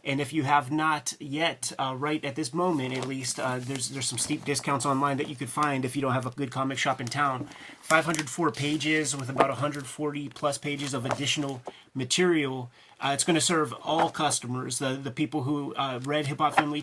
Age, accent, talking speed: 30-49, American, 215 wpm